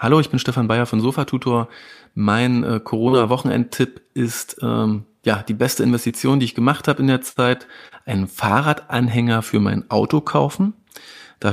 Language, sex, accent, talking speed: German, male, German, 150 wpm